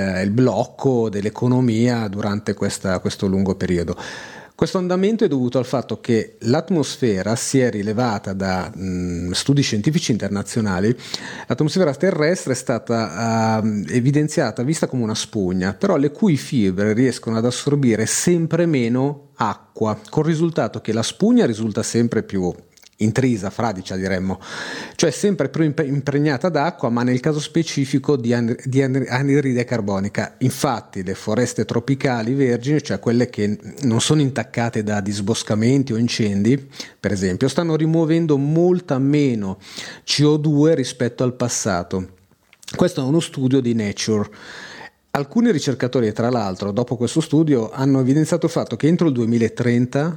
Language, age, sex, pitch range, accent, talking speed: Italian, 40-59, male, 110-140 Hz, native, 130 wpm